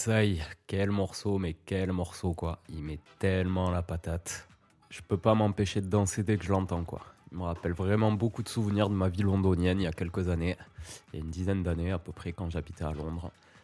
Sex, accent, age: male, French, 20-39